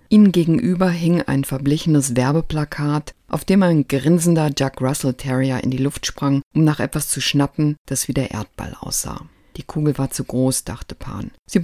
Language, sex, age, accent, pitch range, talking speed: German, female, 50-69, German, 130-165 Hz, 180 wpm